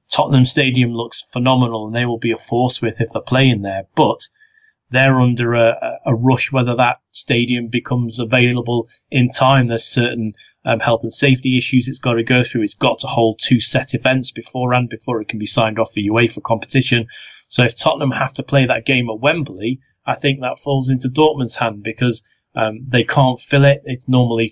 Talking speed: 205 wpm